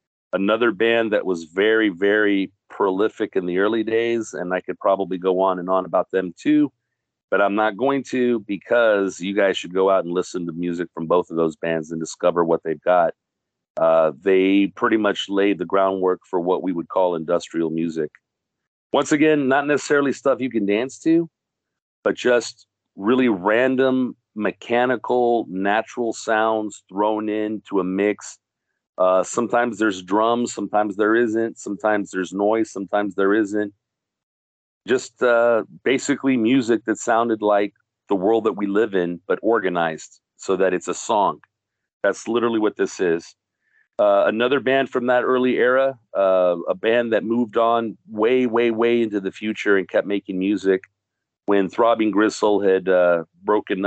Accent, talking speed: American, 165 wpm